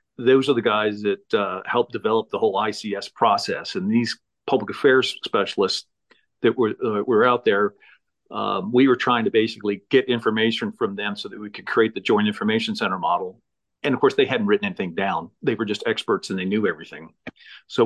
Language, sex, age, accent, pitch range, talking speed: English, male, 50-69, American, 110-160 Hz, 200 wpm